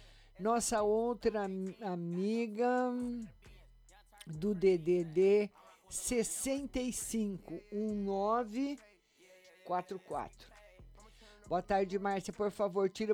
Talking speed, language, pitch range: 55 wpm, Portuguese, 180-220 Hz